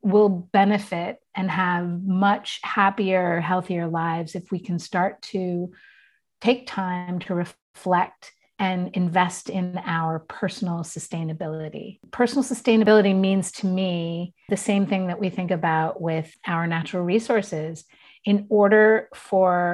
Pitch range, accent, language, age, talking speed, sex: 175-215 Hz, American, English, 30-49, 130 wpm, female